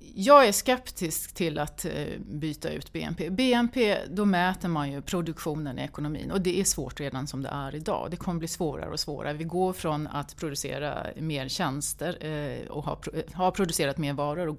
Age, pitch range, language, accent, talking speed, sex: 30-49, 150-195 Hz, Swedish, native, 180 wpm, female